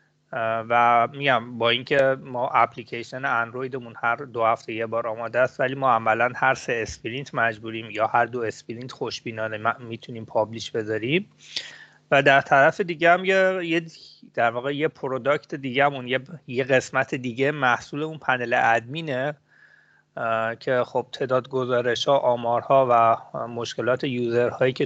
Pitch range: 115-140 Hz